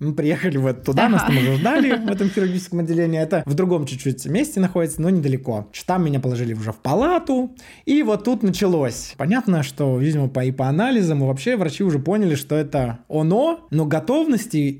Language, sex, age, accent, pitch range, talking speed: Russian, male, 20-39, native, 150-210 Hz, 190 wpm